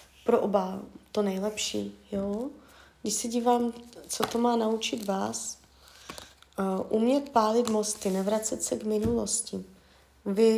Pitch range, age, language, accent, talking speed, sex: 180-220 Hz, 20-39, Czech, native, 125 wpm, female